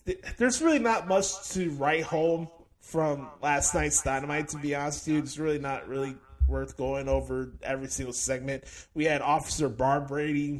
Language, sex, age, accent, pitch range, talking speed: English, male, 20-39, American, 120-160 Hz, 170 wpm